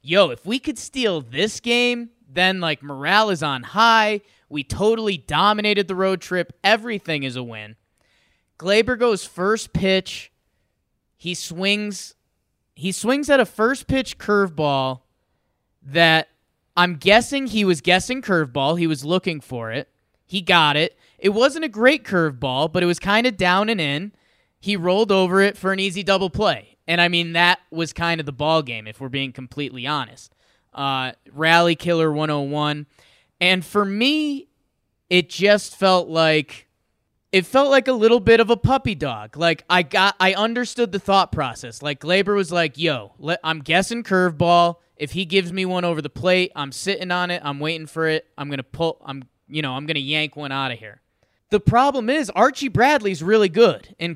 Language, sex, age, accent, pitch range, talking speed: English, male, 20-39, American, 150-205 Hz, 180 wpm